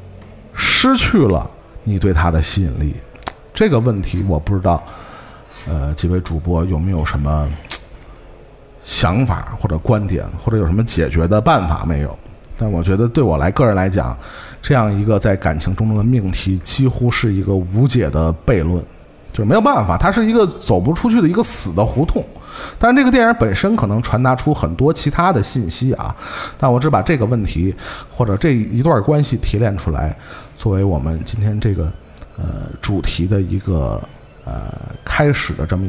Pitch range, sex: 85-120 Hz, male